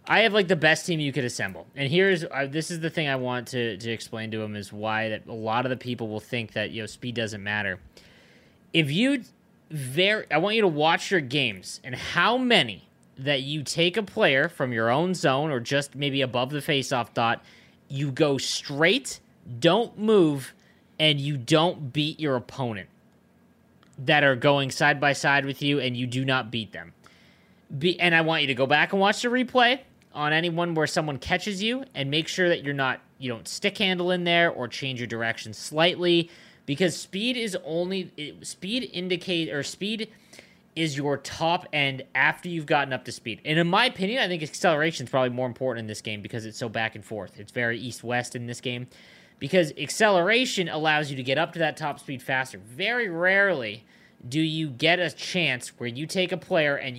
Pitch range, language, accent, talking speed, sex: 125-175 Hz, English, American, 205 wpm, male